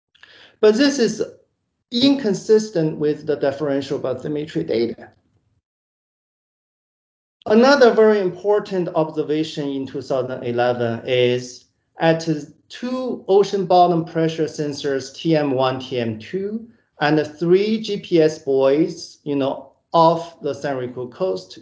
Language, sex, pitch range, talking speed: English, male, 140-190 Hz, 100 wpm